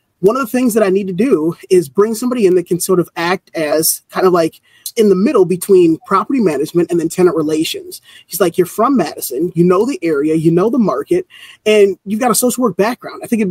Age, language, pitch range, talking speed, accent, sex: 20-39, English, 175-240 Hz, 245 wpm, American, male